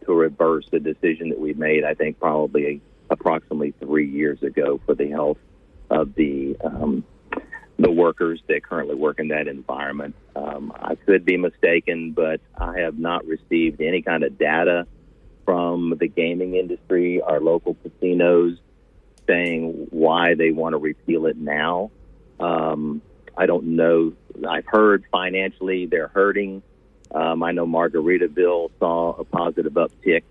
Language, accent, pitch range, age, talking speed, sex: English, American, 80-95 Hz, 50-69, 145 wpm, male